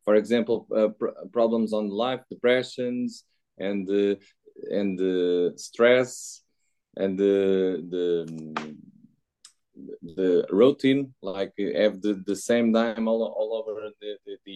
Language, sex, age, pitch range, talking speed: English, male, 20-39, 105-125 Hz, 130 wpm